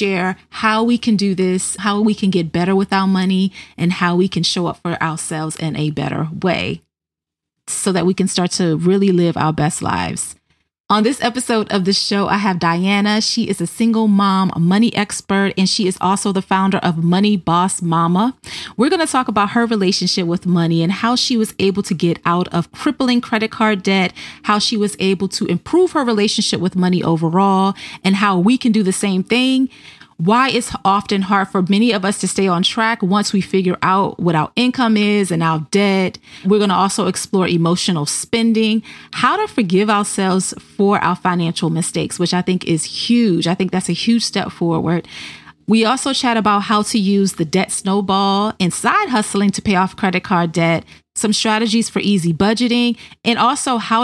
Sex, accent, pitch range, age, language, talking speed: female, American, 175-215 Hz, 30-49, English, 200 wpm